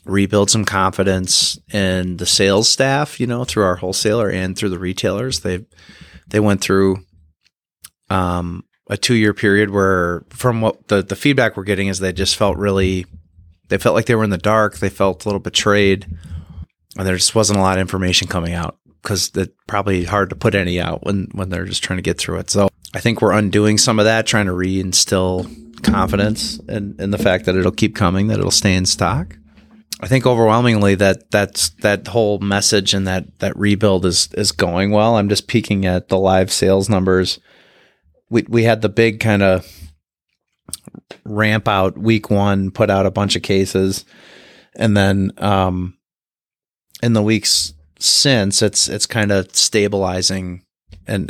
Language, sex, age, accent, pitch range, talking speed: English, male, 30-49, American, 95-105 Hz, 180 wpm